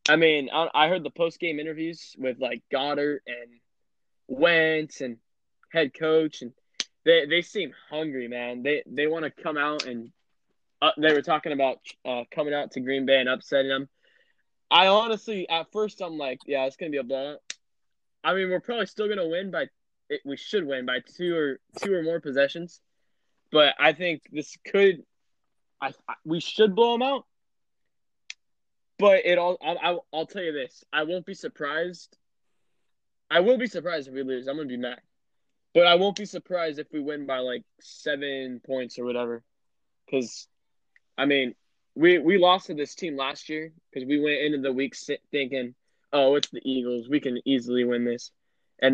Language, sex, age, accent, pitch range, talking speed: English, male, 10-29, American, 130-170 Hz, 185 wpm